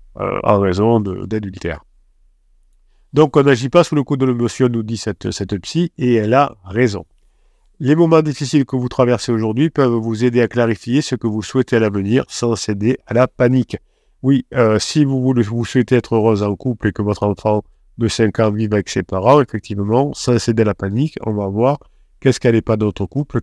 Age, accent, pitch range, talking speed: 50-69, French, 105-130 Hz, 215 wpm